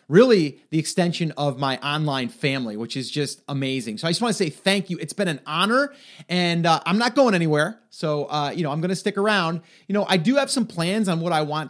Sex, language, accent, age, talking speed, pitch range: male, English, American, 30-49, 250 wpm, 140-175 Hz